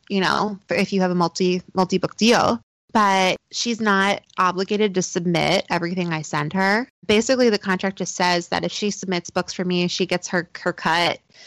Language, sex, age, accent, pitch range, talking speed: English, female, 20-39, American, 170-195 Hz, 185 wpm